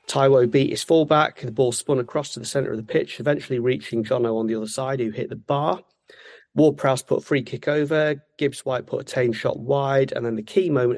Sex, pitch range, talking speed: male, 115-140 Hz, 230 wpm